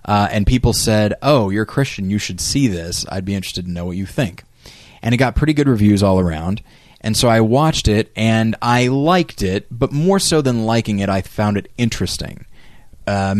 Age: 20-39